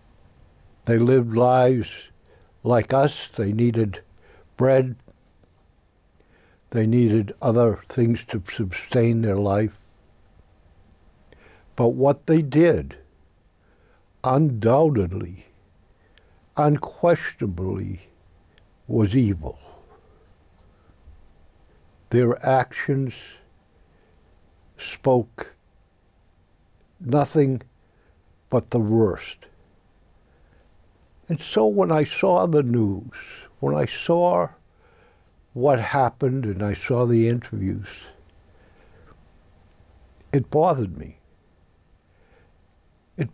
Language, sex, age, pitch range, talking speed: English, male, 60-79, 85-125 Hz, 70 wpm